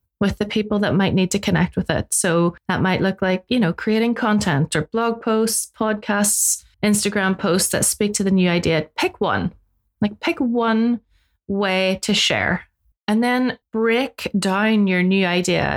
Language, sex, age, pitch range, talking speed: English, female, 30-49, 180-220 Hz, 175 wpm